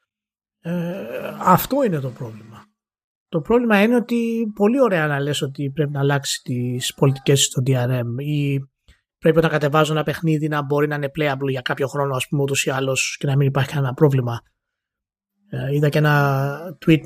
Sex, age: male, 20-39